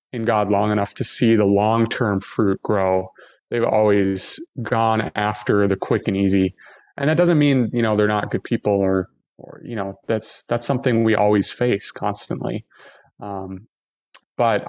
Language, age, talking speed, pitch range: English, 20-39, 170 wpm, 105-130 Hz